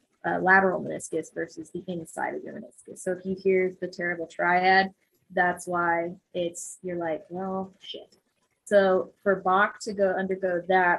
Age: 20-39